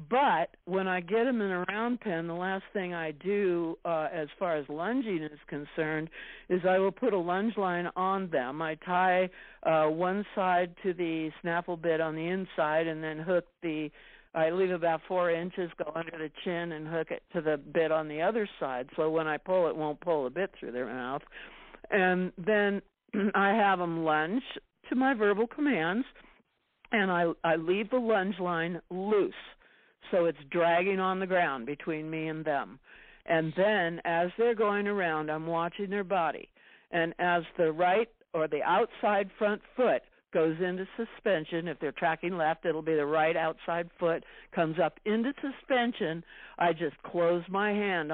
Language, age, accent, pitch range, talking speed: English, 60-79, American, 160-200 Hz, 185 wpm